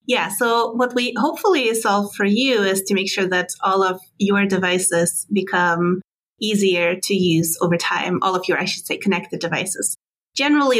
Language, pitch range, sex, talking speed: English, 175-205 Hz, female, 180 wpm